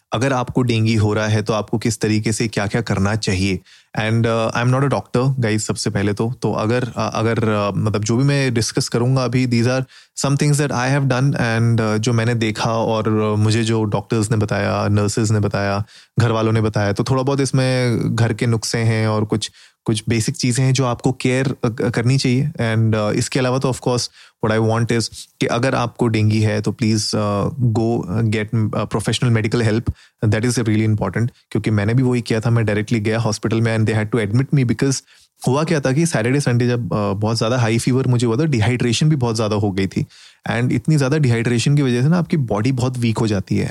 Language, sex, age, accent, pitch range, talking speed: Hindi, male, 30-49, native, 110-130 Hz, 225 wpm